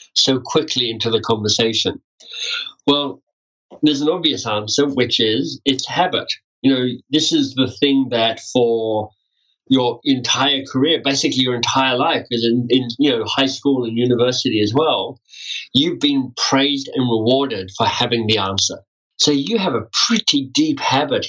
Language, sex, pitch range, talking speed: English, male, 115-135 Hz, 160 wpm